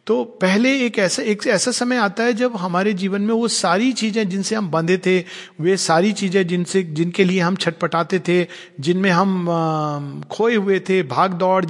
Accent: native